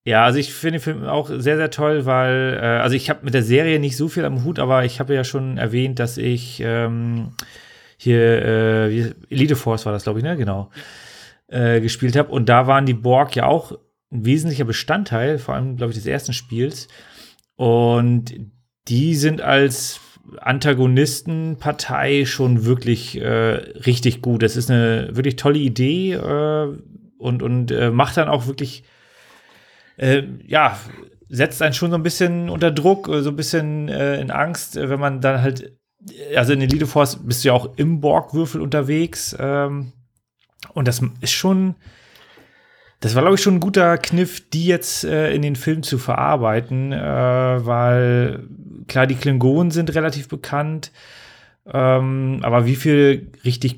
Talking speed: 170 wpm